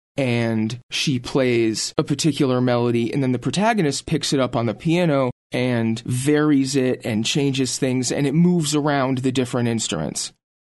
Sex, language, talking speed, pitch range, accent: male, English, 165 wpm, 125-160 Hz, American